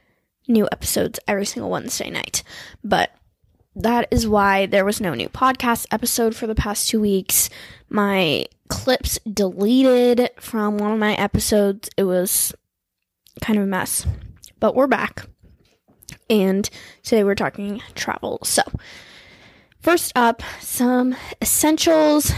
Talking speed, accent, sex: 130 wpm, American, female